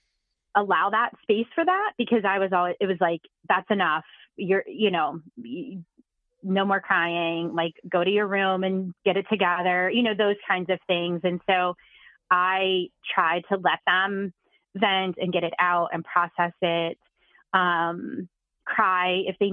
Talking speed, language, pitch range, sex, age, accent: 165 wpm, English, 175-210 Hz, female, 20-39, American